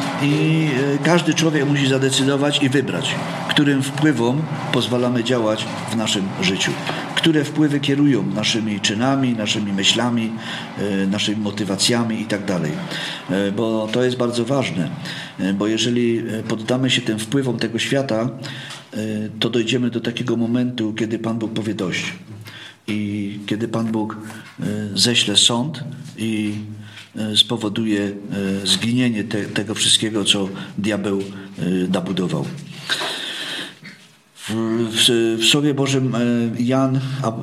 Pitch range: 110-125 Hz